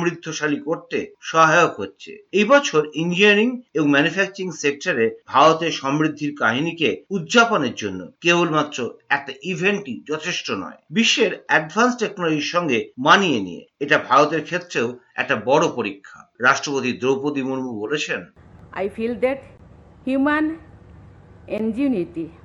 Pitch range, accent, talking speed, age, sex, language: 170-225 Hz, native, 115 wpm, 50-69, male, Bengali